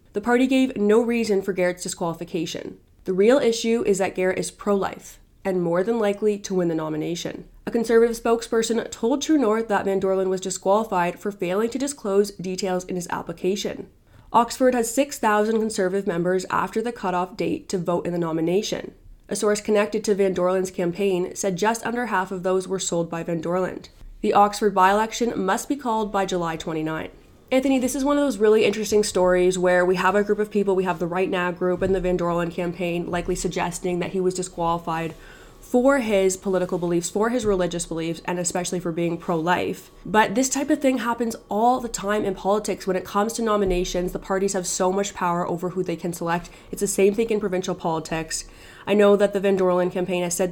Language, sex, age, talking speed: English, female, 20-39, 205 wpm